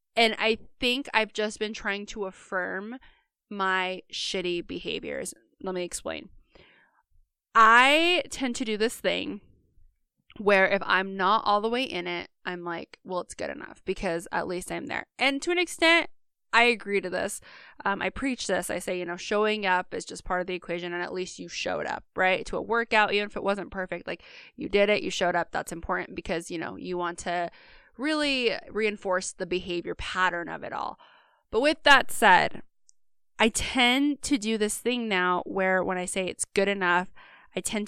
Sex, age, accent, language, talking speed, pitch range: female, 20-39, American, English, 195 wpm, 180-225 Hz